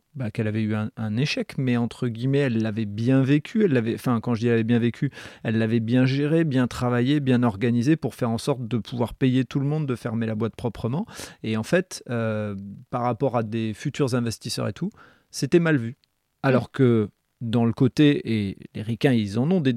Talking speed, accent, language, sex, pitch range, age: 225 wpm, French, French, male, 115-145 Hz, 30-49